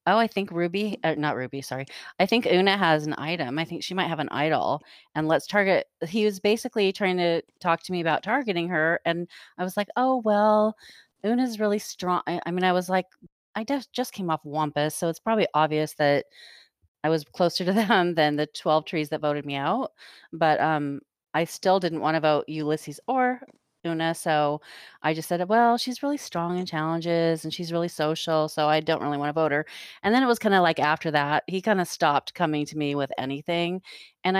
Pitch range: 150-185 Hz